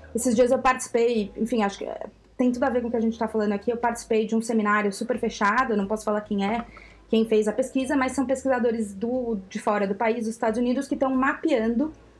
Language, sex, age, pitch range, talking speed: Portuguese, female, 20-39, 215-255 Hz, 240 wpm